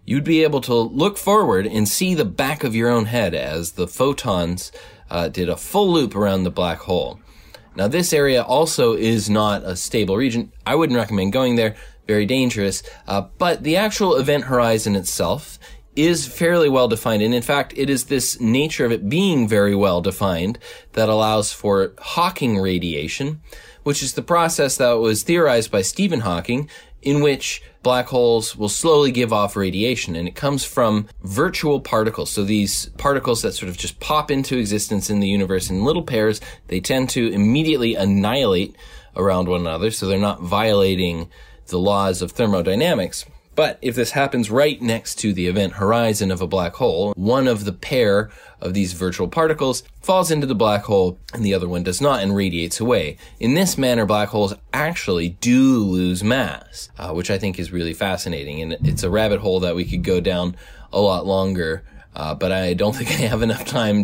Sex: male